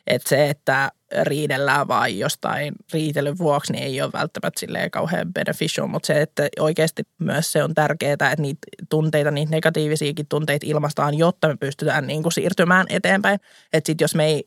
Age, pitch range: 20-39, 150-180 Hz